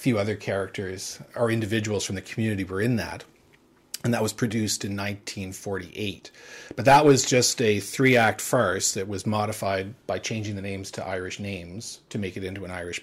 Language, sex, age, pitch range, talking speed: English, male, 40-59, 95-115 Hz, 185 wpm